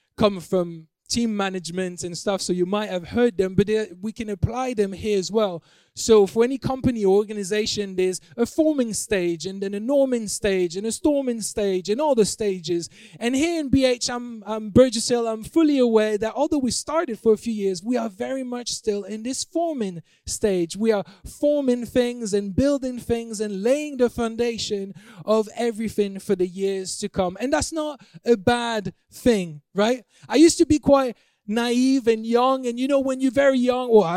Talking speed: 195 wpm